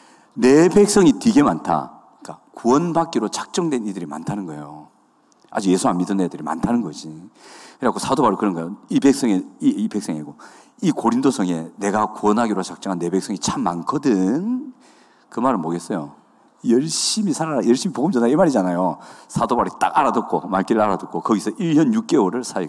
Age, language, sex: 40-59, Korean, male